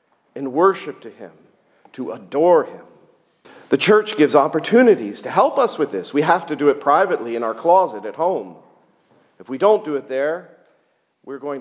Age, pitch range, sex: 50-69, 120-165 Hz, male